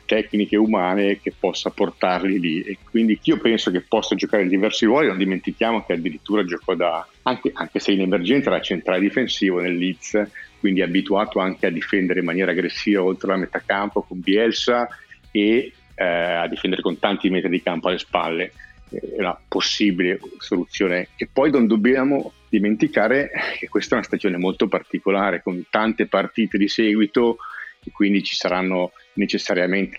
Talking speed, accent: 165 wpm, native